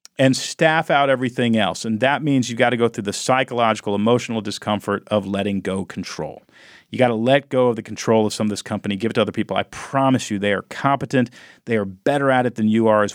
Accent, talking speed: American, 245 wpm